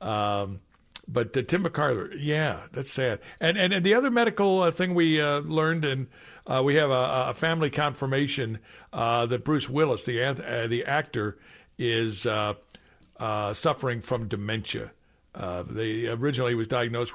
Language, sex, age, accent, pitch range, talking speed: English, male, 60-79, American, 110-150 Hz, 160 wpm